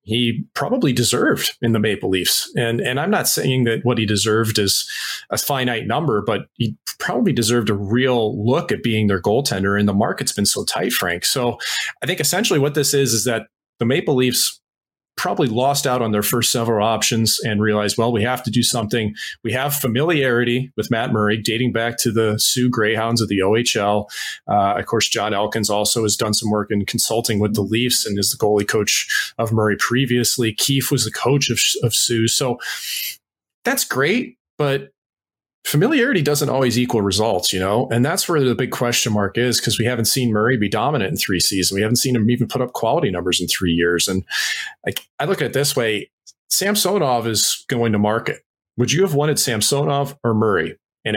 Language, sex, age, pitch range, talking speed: English, male, 30-49, 105-130 Hz, 205 wpm